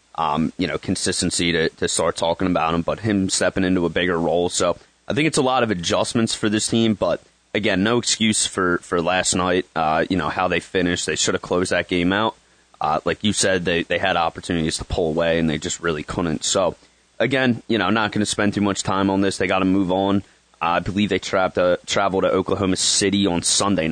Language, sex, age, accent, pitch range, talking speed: English, male, 30-49, American, 85-105 Hz, 235 wpm